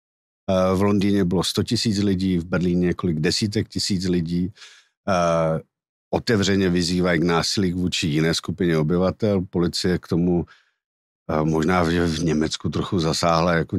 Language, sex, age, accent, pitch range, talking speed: Czech, male, 50-69, native, 85-95 Hz, 125 wpm